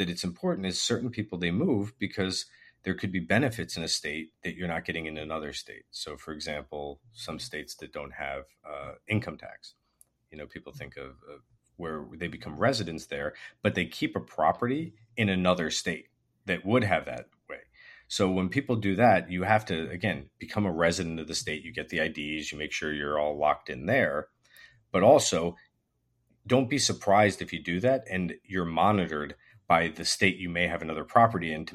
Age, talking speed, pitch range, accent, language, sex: 40-59, 200 wpm, 80-100 Hz, American, English, male